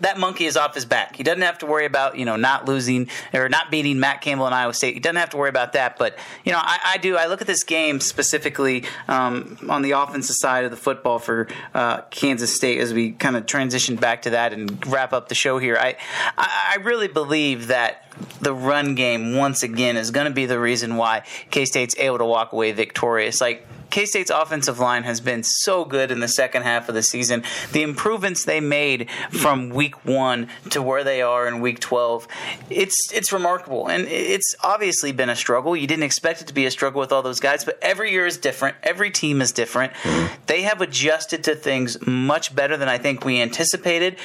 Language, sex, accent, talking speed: English, male, American, 225 wpm